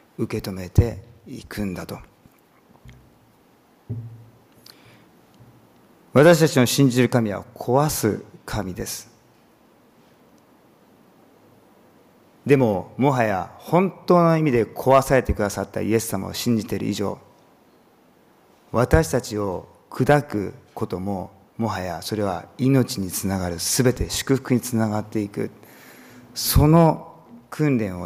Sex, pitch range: male, 100-130 Hz